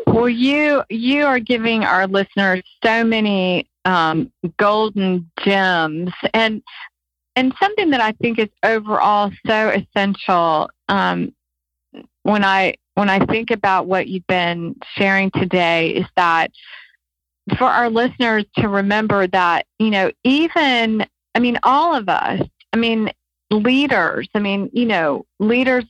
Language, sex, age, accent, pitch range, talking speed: English, female, 40-59, American, 180-215 Hz, 135 wpm